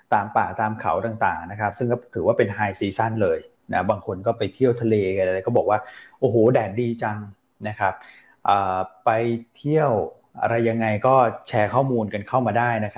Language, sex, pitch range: Thai, male, 105-125 Hz